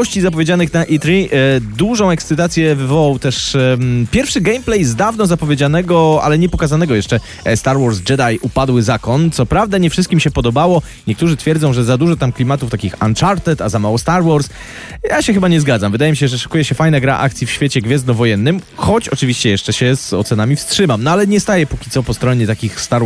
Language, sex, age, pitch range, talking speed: Polish, male, 20-39, 110-160 Hz, 205 wpm